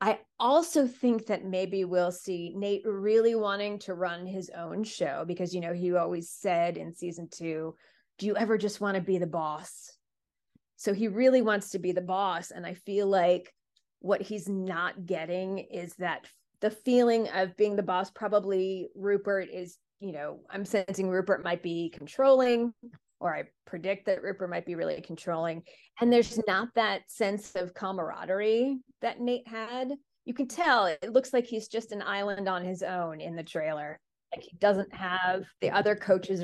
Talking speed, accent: 180 wpm, American